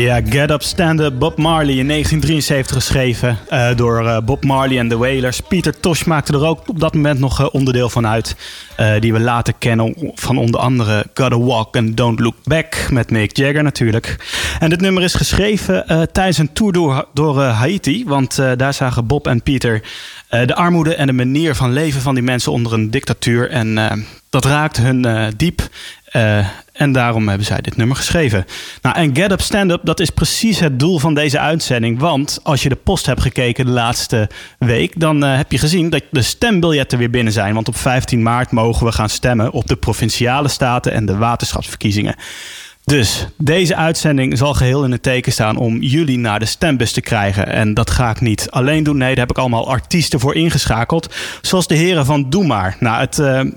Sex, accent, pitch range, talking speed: male, Dutch, 115-150 Hz, 210 wpm